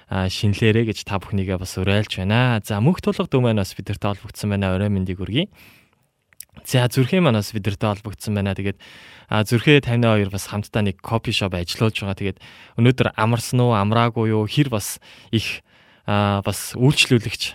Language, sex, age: Korean, male, 20-39